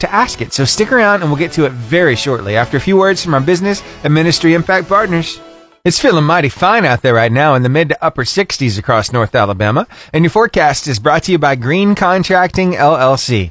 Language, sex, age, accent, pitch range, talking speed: English, male, 30-49, American, 115-175 Hz, 230 wpm